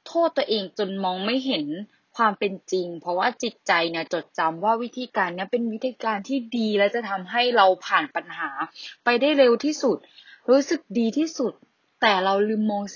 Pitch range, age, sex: 180-250 Hz, 10-29, female